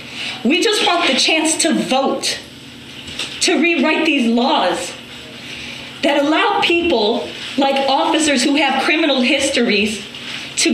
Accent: American